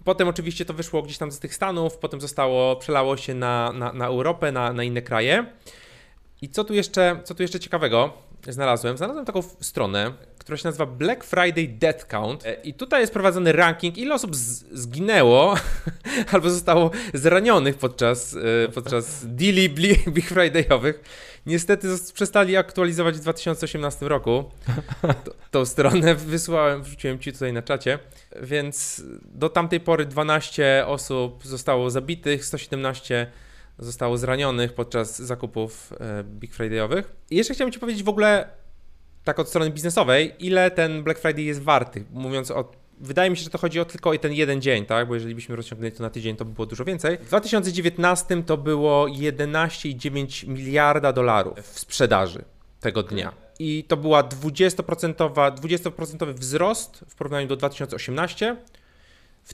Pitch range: 125-175 Hz